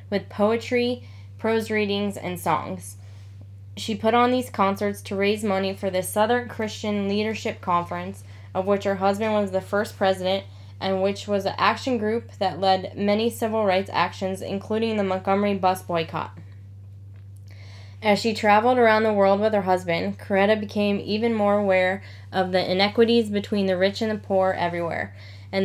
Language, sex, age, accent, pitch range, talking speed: English, female, 10-29, American, 170-205 Hz, 165 wpm